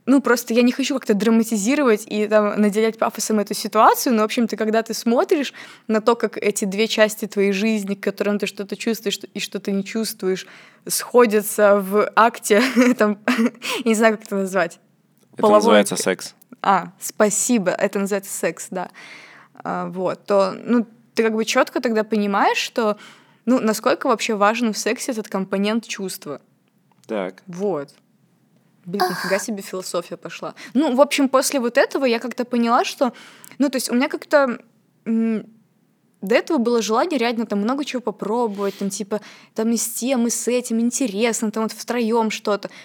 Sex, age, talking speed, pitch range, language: female, 20-39, 165 wpm, 205-240 Hz, Russian